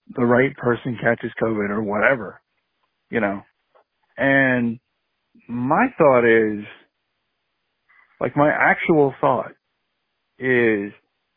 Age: 50-69